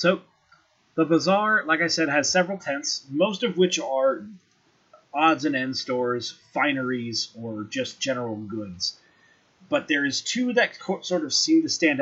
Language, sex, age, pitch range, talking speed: English, male, 30-49, 125-170 Hz, 165 wpm